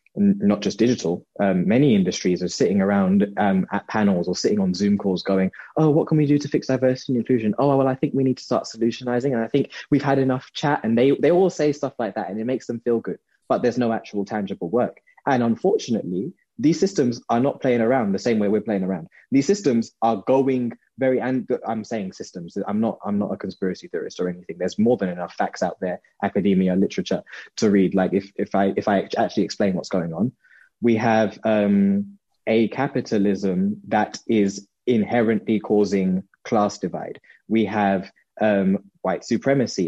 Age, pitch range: 20-39, 95-130 Hz